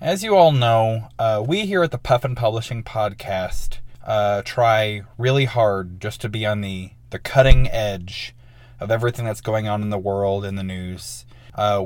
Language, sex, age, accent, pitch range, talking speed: English, male, 20-39, American, 100-125 Hz, 180 wpm